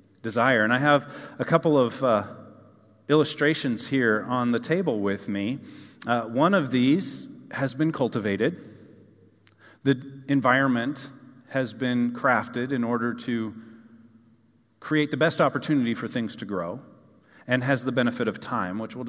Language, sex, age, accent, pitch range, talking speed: English, male, 40-59, American, 115-145 Hz, 145 wpm